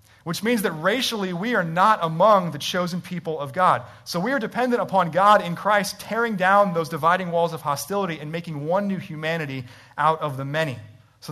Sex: male